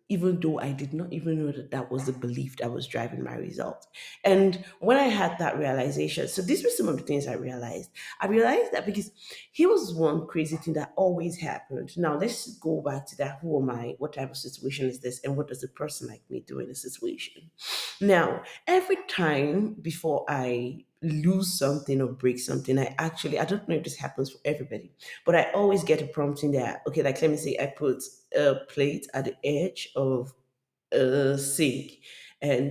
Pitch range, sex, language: 140-190 Hz, female, English